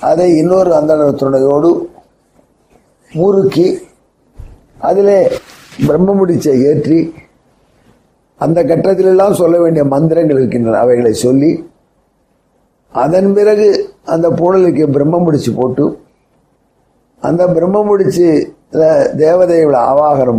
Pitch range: 140-175 Hz